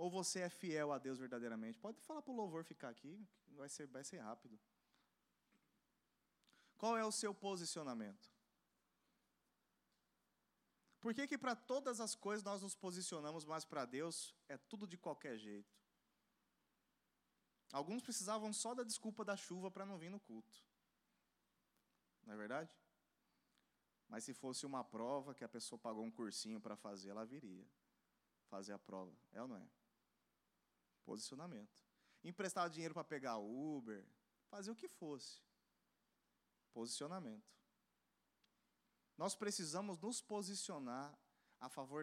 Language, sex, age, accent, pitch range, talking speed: Portuguese, male, 20-39, Brazilian, 130-205 Hz, 135 wpm